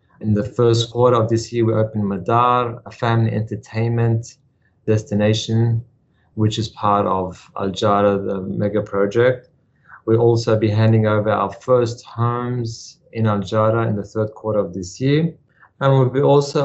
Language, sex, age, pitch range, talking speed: English, male, 30-49, 105-125 Hz, 160 wpm